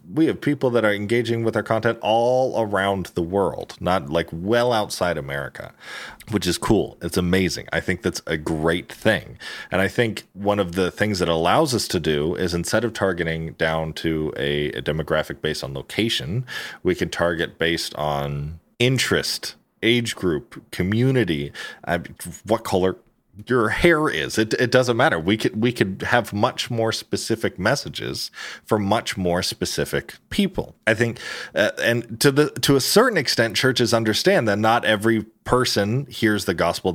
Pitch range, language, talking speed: 85-115 Hz, English, 170 wpm